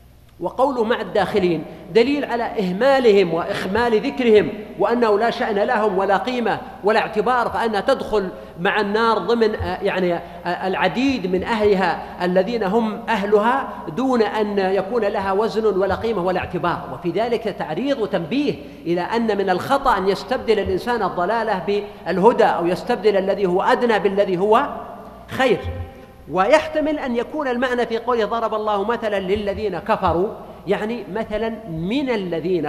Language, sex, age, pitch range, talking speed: Arabic, male, 50-69, 180-230 Hz, 135 wpm